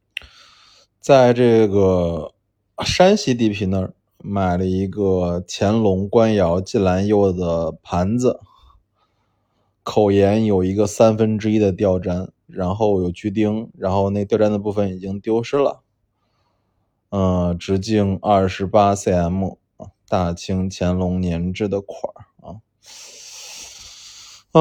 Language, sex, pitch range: Chinese, male, 95-110 Hz